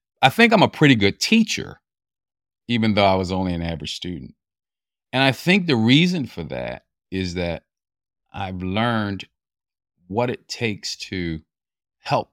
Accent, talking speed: American, 150 wpm